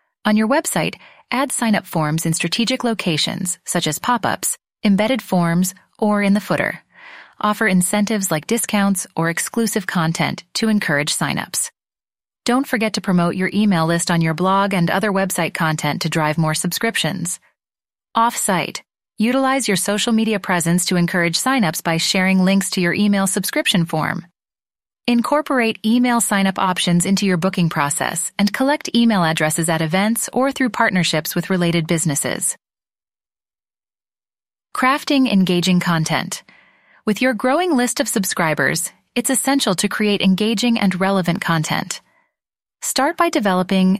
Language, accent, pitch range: English, American, 170-230 Hz